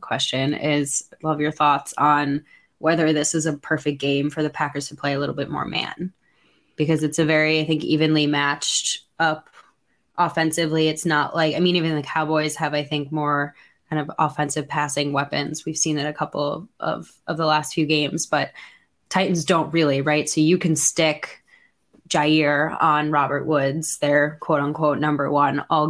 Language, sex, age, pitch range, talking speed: English, female, 20-39, 145-165 Hz, 185 wpm